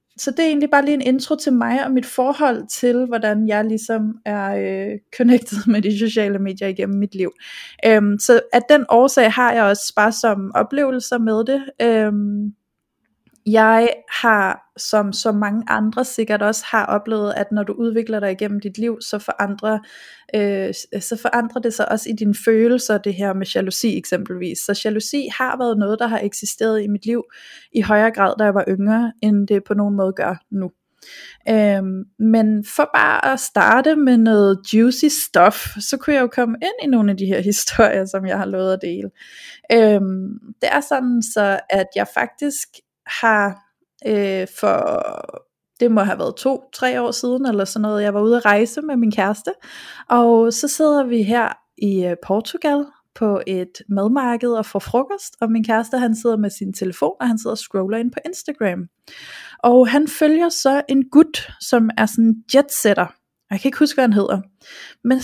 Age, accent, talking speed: 20-39, native, 185 wpm